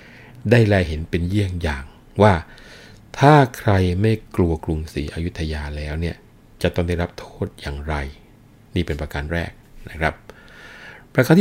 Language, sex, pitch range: Thai, male, 80-105 Hz